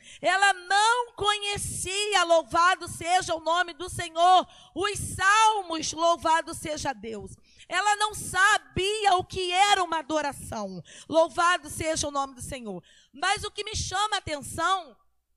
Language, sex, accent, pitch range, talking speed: Portuguese, female, Brazilian, 315-390 Hz, 135 wpm